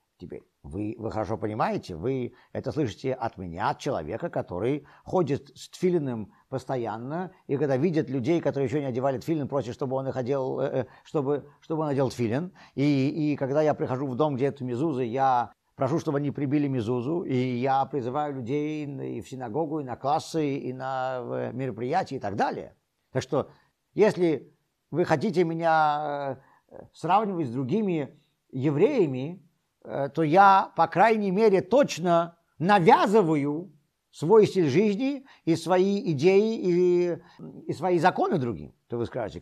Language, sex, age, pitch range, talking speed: Russian, male, 50-69, 125-170 Hz, 150 wpm